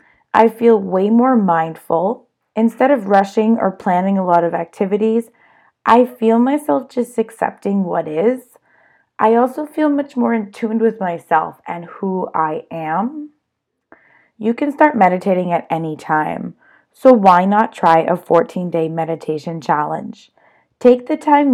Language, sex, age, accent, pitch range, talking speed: English, female, 20-39, American, 170-225 Hz, 145 wpm